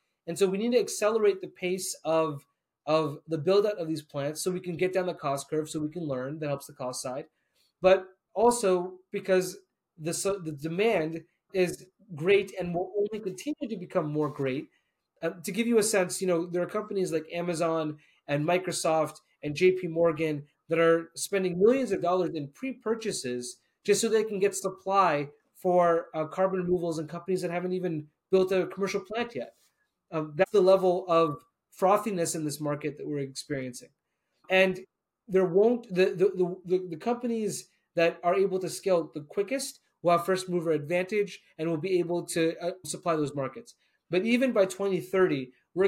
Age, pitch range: 30-49, 160-195 Hz